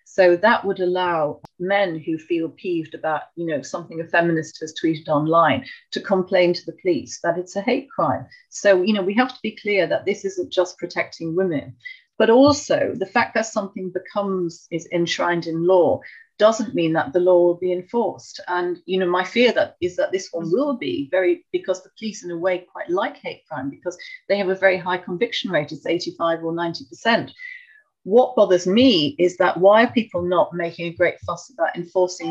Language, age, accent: English, 40-59, British